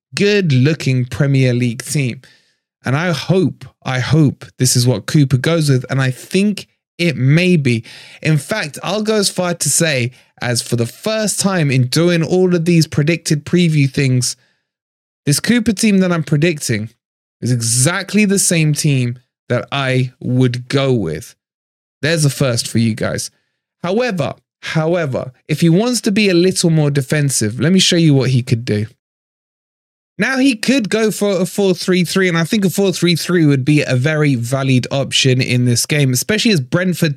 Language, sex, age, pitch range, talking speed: English, male, 20-39, 130-180 Hz, 175 wpm